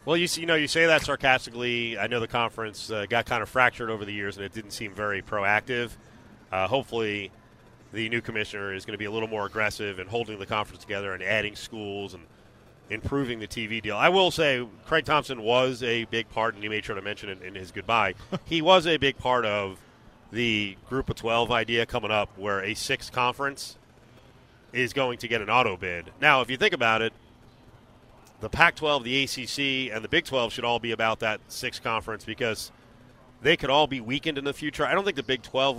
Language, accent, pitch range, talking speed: English, American, 110-130 Hz, 220 wpm